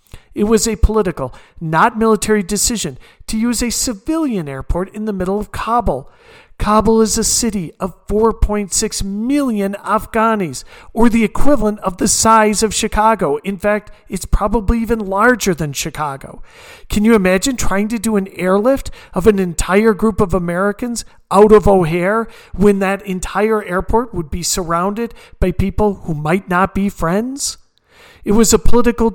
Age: 40-59